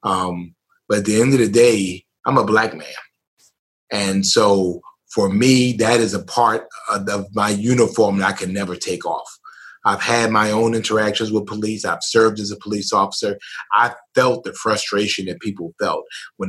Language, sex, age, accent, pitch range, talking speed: English, male, 30-49, American, 100-140 Hz, 180 wpm